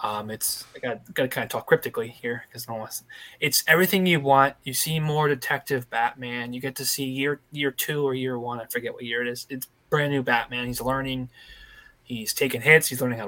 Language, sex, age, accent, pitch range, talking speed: English, male, 20-39, American, 120-140 Hz, 220 wpm